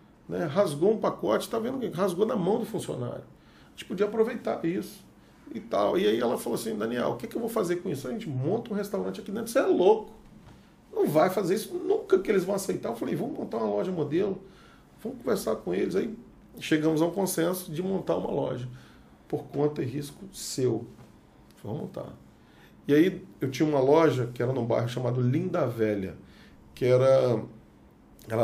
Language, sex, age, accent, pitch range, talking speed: Portuguese, male, 40-59, Brazilian, 110-160 Hz, 205 wpm